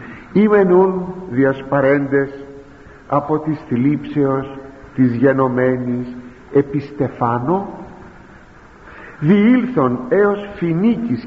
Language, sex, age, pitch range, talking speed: Greek, male, 50-69, 125-205 Hz, 65 wpm